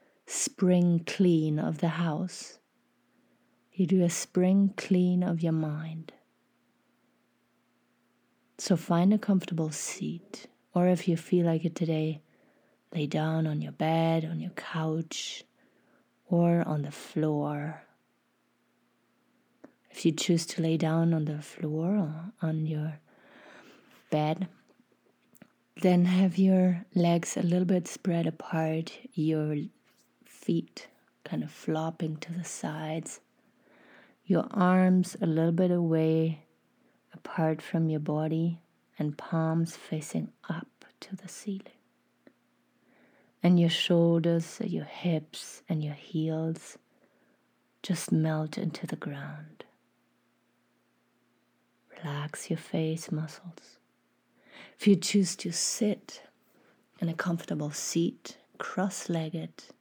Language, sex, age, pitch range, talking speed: English, female, 30-49, 155-180 Hz, 110 wpm